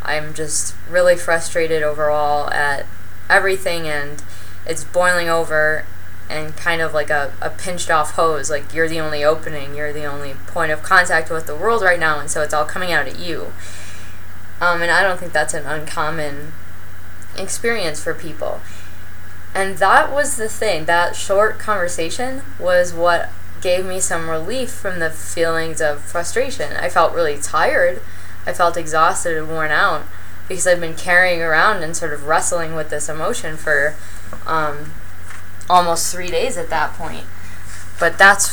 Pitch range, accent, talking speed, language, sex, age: 150-185 Hz, American, 165 wpm, English, female, 10-29